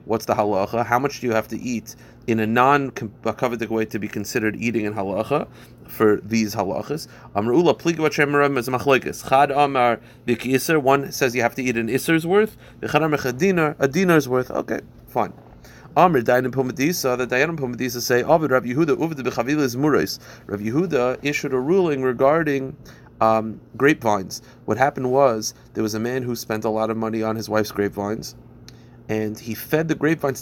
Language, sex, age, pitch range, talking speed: English, male, 30-49, 115-155 Hz, 130 wpm